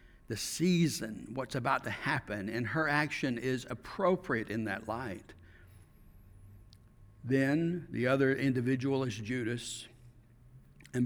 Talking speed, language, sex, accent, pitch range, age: 115 wpm, English, male, American, 115-140 Hz, 60-79